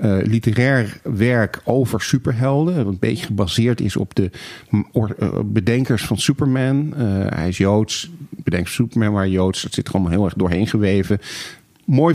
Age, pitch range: 40-59, 100-130 Hz